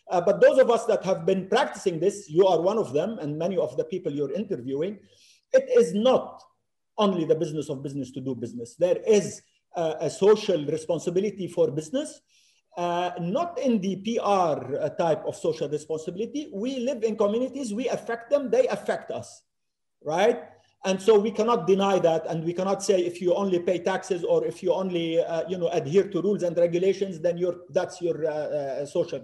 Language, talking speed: English, 195 wpm